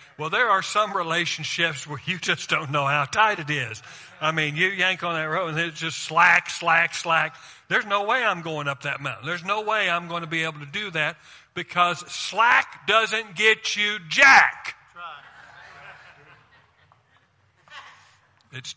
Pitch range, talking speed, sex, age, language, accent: 130-180 Hz, 170 wpm, male, 50-69, English, American